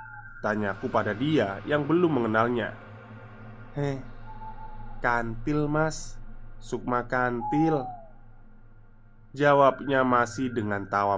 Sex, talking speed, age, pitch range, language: male, 80 wpm, 20-39, 110-145 Hz, Indonesian